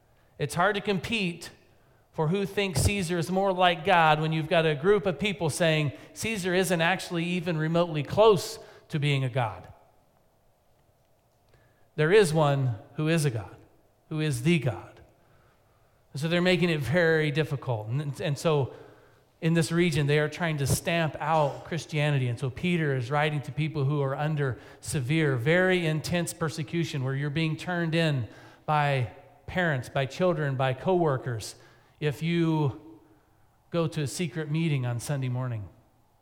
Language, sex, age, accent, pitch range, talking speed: English, male, 40-59, American, 120-165 Hz, 155 wpm